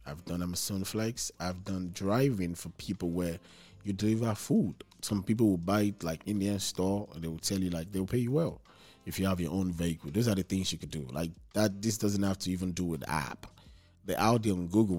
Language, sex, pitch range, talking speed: English, male, 85-100 Hz, 240 wpm